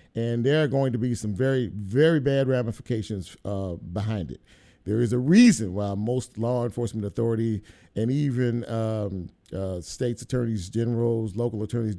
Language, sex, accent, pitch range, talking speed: English, male, American, 110-140 Hz, 160 wpm